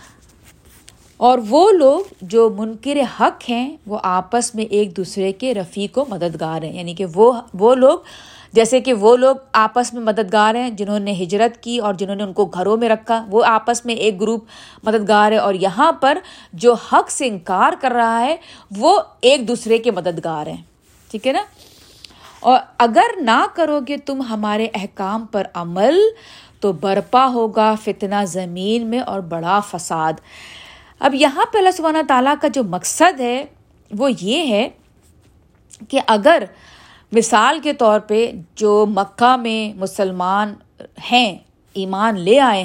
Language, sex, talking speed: Urdu, female, 160 wpm